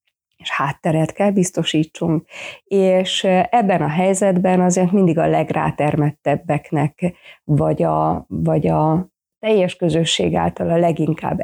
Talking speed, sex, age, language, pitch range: 105 wpm, female, 30-49, Hungarian, 155-180 Hz